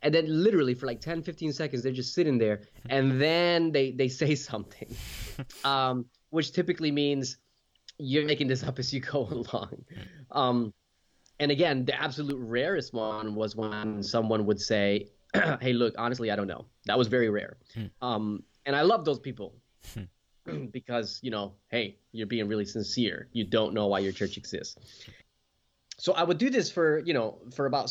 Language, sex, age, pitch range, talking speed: English, male, 20-39, 110-145 Hz, 180 wpm